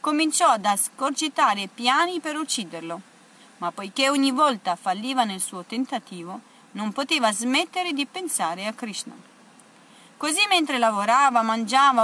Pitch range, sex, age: 215-280 Hz, female, 30-49